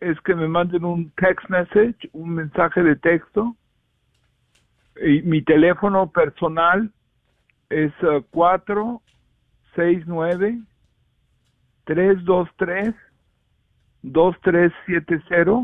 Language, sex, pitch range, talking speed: Spanish, male, 145-185 Hz, 65 wpm